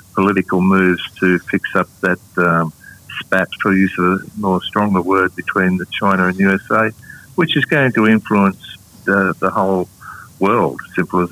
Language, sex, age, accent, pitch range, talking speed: English, male, 50-69, Australian, 95-105 Hz, 170 wpm